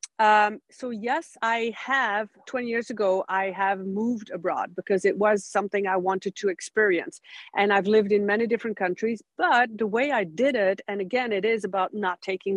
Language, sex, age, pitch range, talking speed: English, female, 50-69, 195-250 Hz, 190 wpm